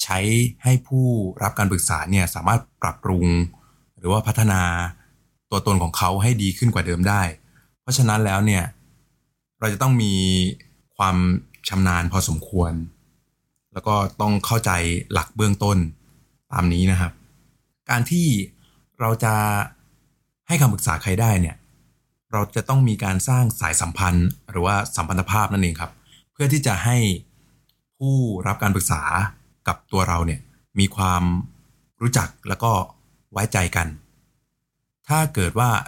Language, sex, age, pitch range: Thai, male, 20-39, 95-125 Hz